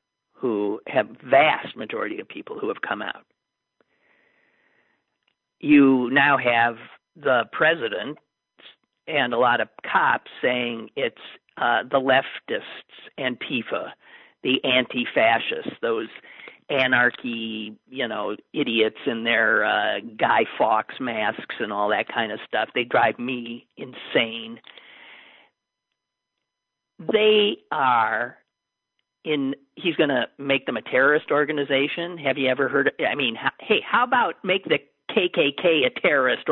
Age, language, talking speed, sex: 50-69, English, 125 wpm, male